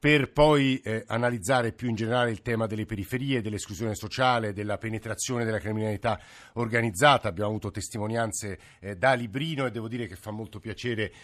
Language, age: Italian, 50-69